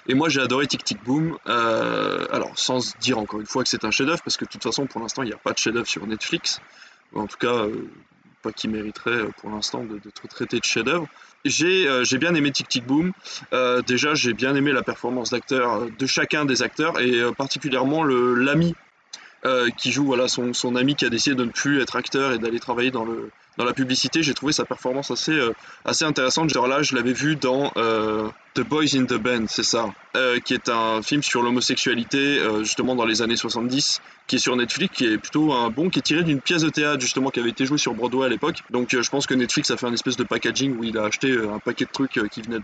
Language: French